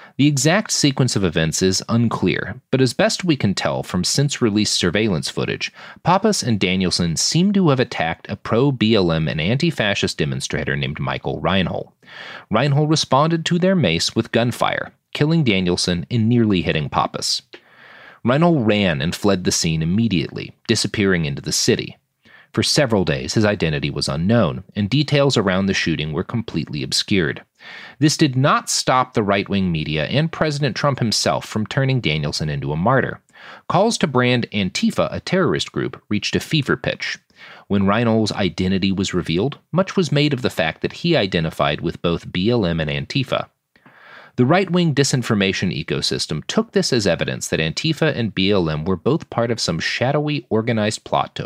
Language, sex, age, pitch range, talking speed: English, male, 40-59, 95-145 Hz, 160 wpm